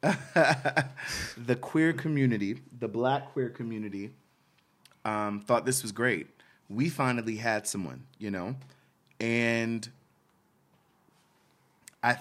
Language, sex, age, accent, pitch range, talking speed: English, male, 30-49, American, 105-125 Hz, 100 wpm